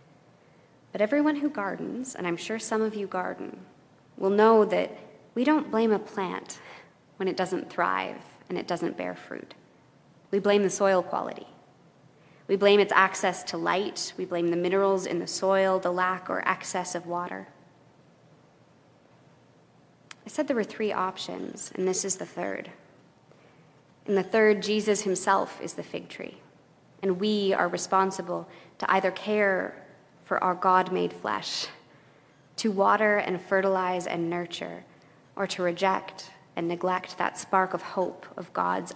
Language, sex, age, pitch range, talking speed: English, female, 20-39, 175-200 Hz, 155 wpm